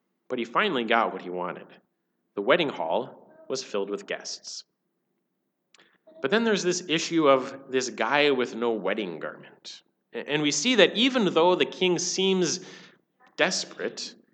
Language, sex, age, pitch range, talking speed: English, male, 30-49, 125-195 Hz, 150 wpm